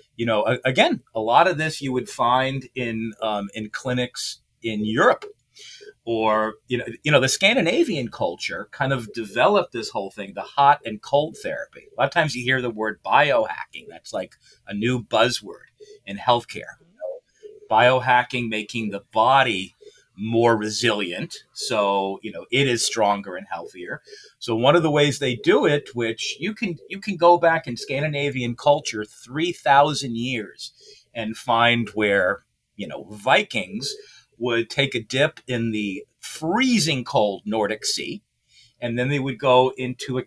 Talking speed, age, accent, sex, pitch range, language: 160 wpm, 40-59, American, male, 115-145 Hz, English